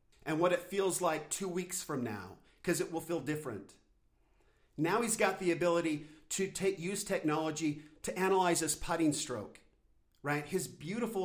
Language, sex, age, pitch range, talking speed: English, male, 50-69, 145-185 Hz, 165 wpm